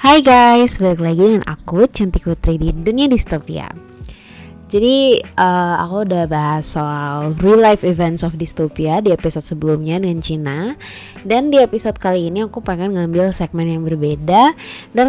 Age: 20-39